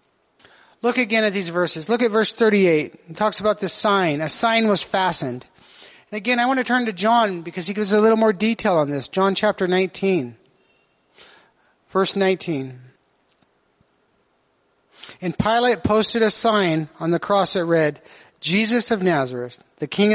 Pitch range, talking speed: 165-220 Hz, 165 wpm